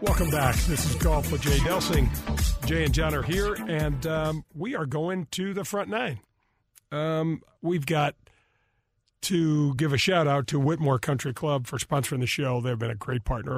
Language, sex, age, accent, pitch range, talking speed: English, male, 40-59, American, 130-155 Hz, 190 wpm